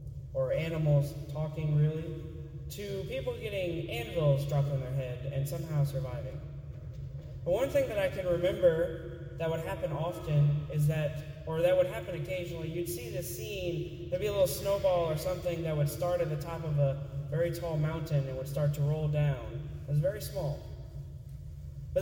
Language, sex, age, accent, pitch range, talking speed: English, male, 20-39, American, 140-170 Hz, 180 wpm